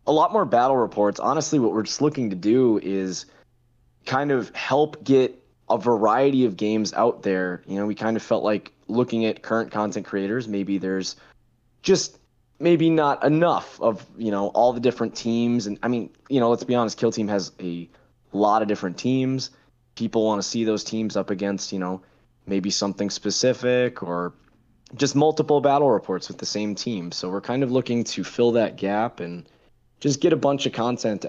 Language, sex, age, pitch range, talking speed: English, male, 20-39, 100-125 Hz, 195 wpm